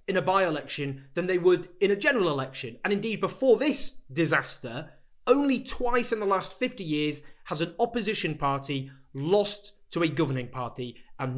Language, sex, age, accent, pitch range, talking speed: English, male, 20-39, British, 140-210 Hz, 170 wpm